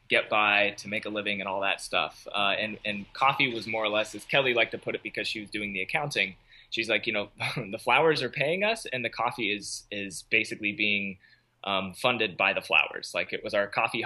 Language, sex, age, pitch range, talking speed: English, male, 20-39, 105-120 Hz, 240 wpm